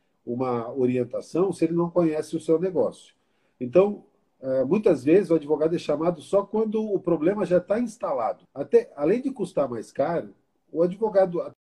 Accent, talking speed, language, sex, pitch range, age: Brazilian, 160 wpm, Portuguese, male, 135-200 Hz, 50-69